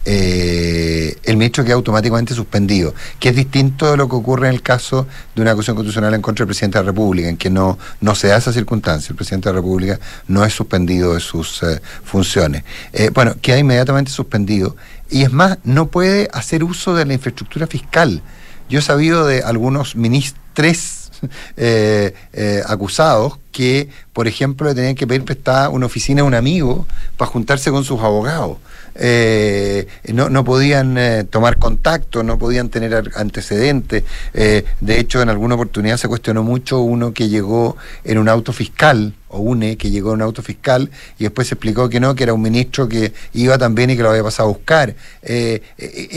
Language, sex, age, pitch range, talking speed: Spanish, male, 50-69, 105-135 Hz, 190 wpm